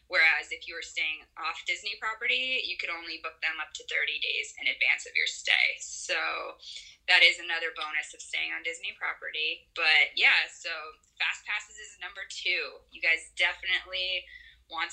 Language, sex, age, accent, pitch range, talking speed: English, female, 20-39, American, 155-260 Hz, 175 wpm